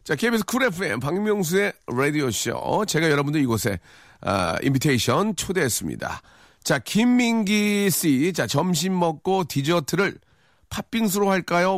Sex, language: male, Korean